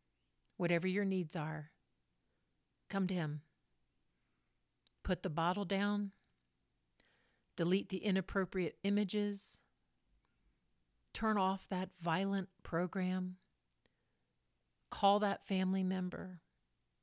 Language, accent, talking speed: English, American, 85 wpm